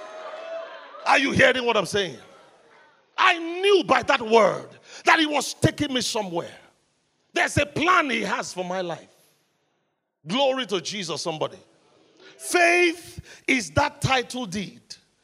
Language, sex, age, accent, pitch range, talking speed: English, male, 40-59, Nigerian, 225-310 Hz, 135 wpm